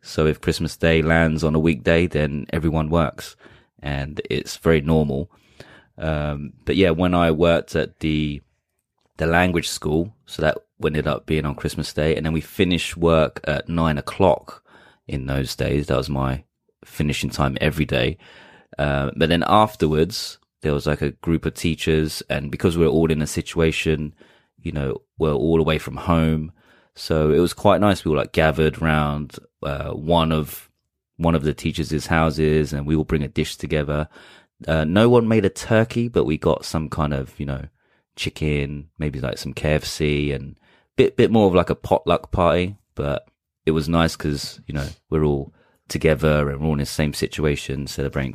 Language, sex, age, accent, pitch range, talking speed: English, male, 30-49, British, 75-80 Hz, 185 wpm